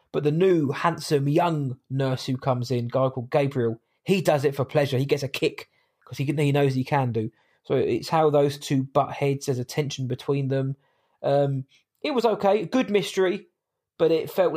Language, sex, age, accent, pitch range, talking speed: English, male, 20-39, British, 135-165 Hz, 210 wpm